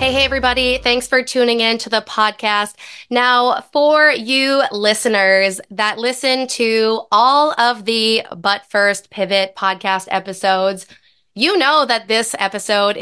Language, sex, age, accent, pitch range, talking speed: English, female, 20-39, American, 205-250 Hz, 140 wpm